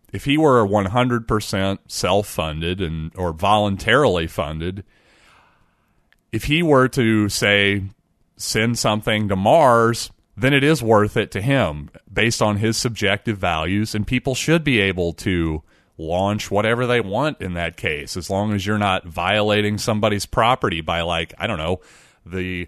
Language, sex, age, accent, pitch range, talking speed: English, male, 30-49, American, 95-115 Hz, 150 wpm